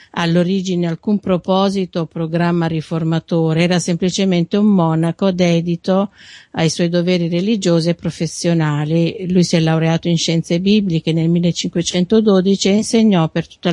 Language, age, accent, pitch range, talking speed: Italian, 50-69, native, 165-195 Hz, 130 wpm